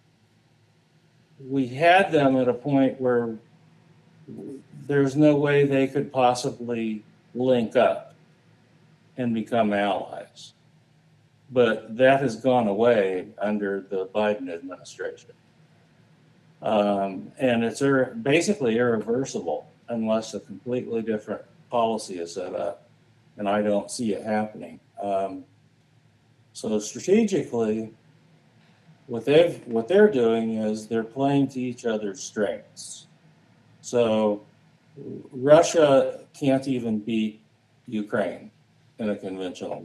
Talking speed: 105 wpm